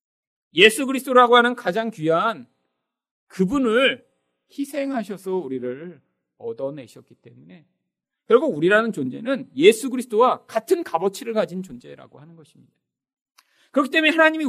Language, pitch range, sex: Korean, 165-270 Hz, male